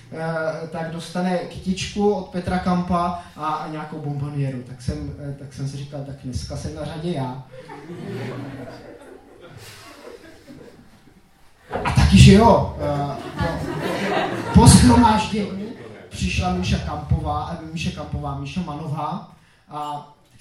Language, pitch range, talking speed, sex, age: Czech, 125-170 Hz, 105 wpm, male, 20-39